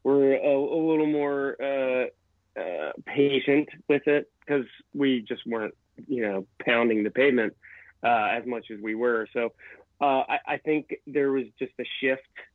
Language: English